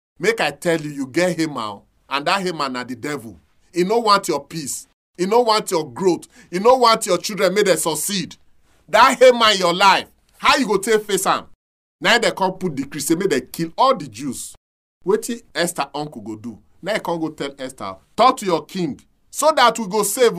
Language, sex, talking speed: English, male, 220 wpm